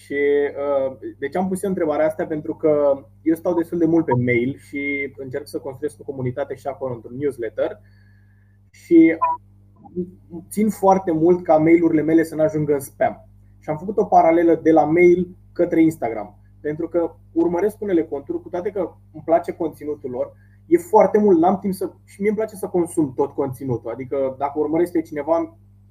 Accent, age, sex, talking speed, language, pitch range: native, 20-39, male, 190 wpm, Romanian, 115-175 Hz